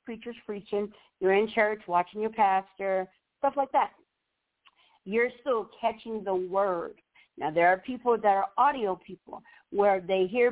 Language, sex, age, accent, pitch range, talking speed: English, female, 40-59, American, 185-225 Hz, 155 wpm